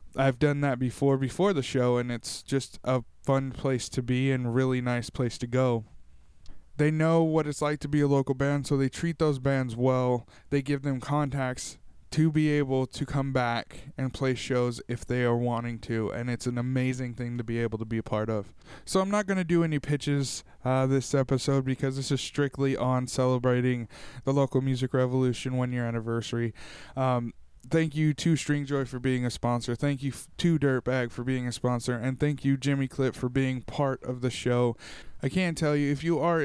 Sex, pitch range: male, 125-145 Hz